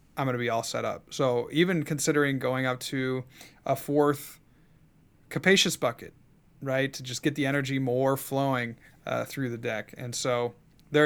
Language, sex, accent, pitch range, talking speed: English, male, American, 130-160 Hz, 175 wpm